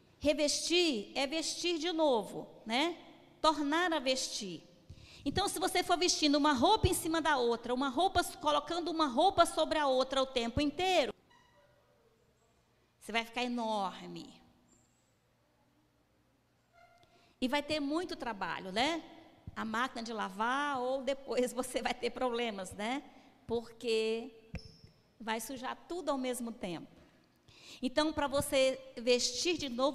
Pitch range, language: 235-305 Hz, Portuguese